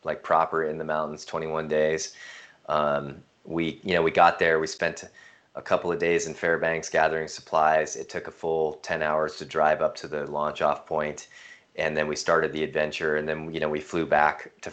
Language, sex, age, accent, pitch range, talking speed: English, male, 20-39, American, 75-95 Hz, 210 wpm